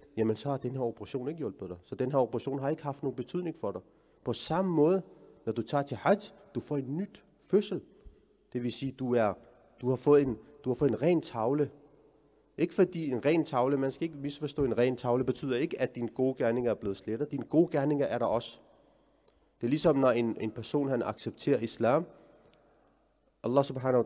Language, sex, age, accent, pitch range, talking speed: Danish, male, 30-49, native, 120-150 Hz, 220 wpm